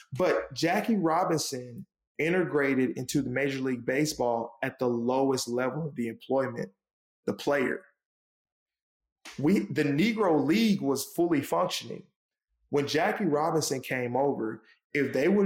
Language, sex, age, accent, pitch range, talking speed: English, male, 20-39, American, 130-165 Hz, 130 wpm